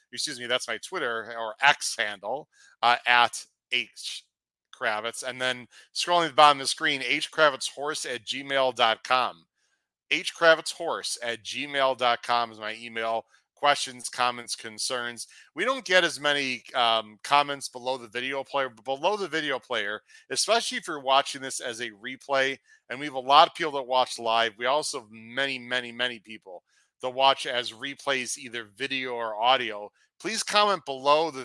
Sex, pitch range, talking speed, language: male, 120-145 Hz, 165 wpm, English